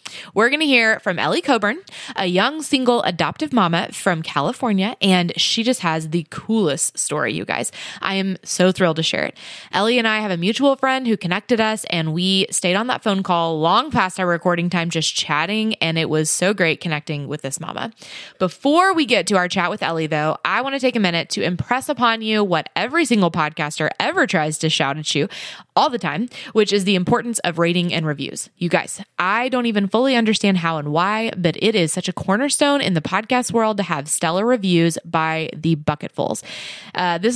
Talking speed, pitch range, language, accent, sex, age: 210 wpm, 170-230 Hz, English, American, female, 20-39